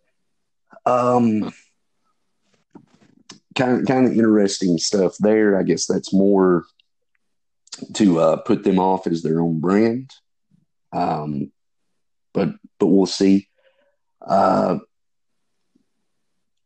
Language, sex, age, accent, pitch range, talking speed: English, male, 40-59, American, 90-105 Hz, 95 wpm